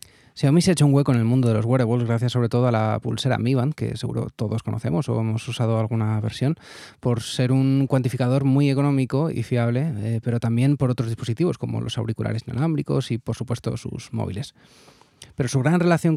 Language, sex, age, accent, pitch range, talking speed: Spanish, male, 20-39, Spanish, 115-135 Hz, 210 wpm